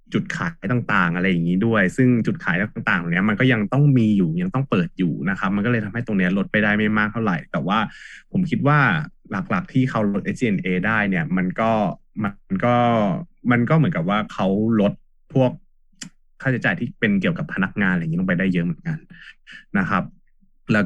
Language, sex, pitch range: Thai, male, 100-165 Hz